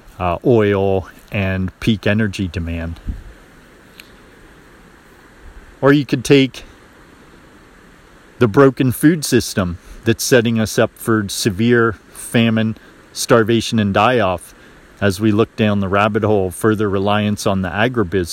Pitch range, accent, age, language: 95-115 Hz, American, 40-59, English